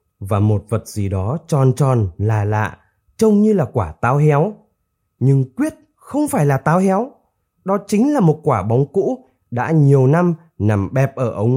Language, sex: Vietnamese, male